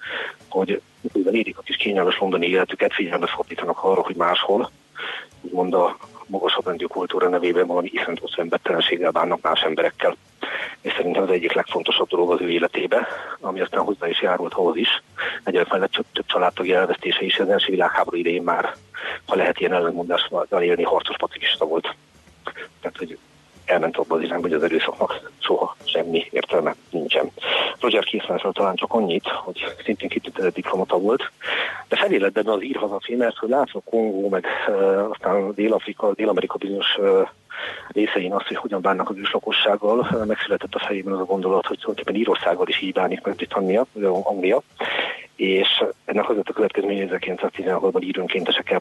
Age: 40-59